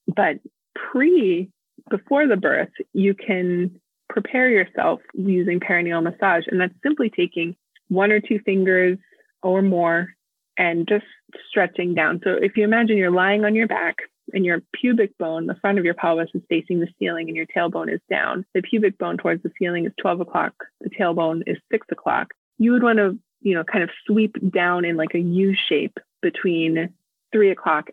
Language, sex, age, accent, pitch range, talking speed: English, female, 20-39, American, 175-215 Hz, 185 wpm